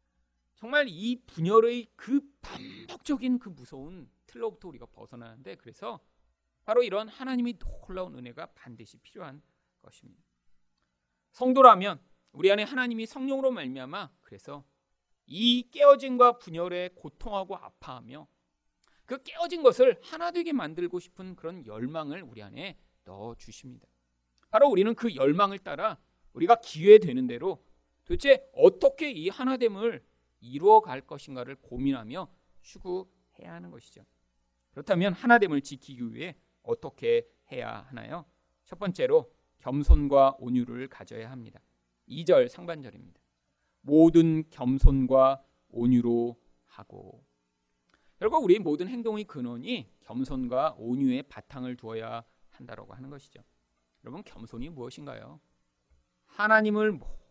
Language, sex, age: Korean, male, 40-59